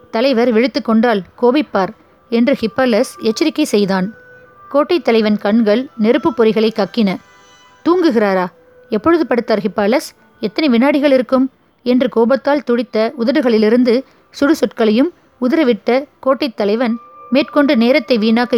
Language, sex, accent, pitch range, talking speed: Tamil, female, native, 220-270 Hz, 105 wpm